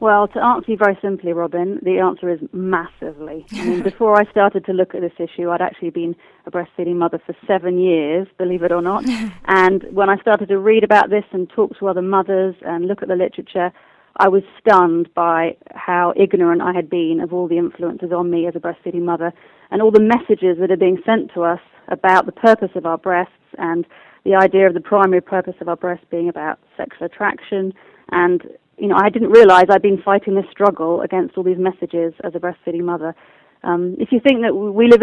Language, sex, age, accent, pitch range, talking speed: English, female, 30-49, British, 175-200 Hz, 215 wpm